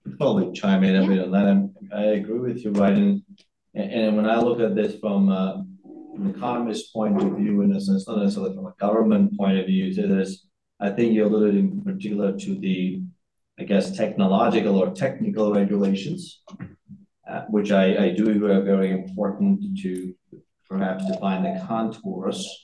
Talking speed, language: 185 wpm, English